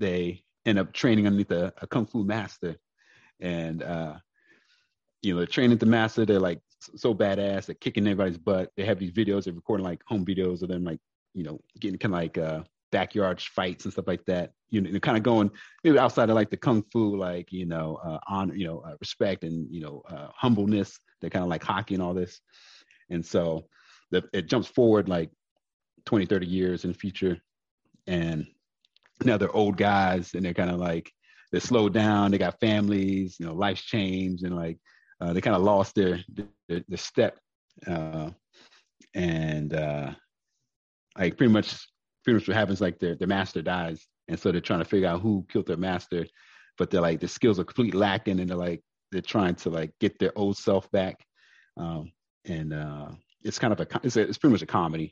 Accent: American